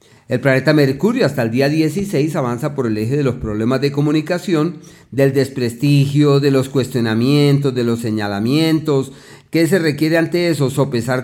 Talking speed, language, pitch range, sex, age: 160 wpm, Spanish, 125-160 Hz, male, 40-59